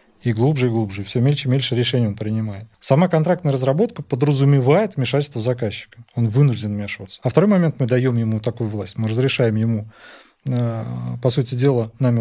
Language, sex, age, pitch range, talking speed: Russian, male, 30-49, 120-155 Hz, 170 wpm